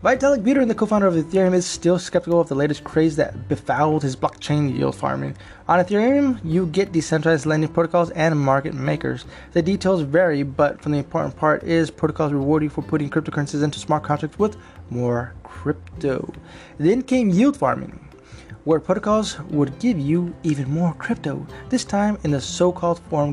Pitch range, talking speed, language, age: 135-175 Hz, 170 wpm, English, 20-39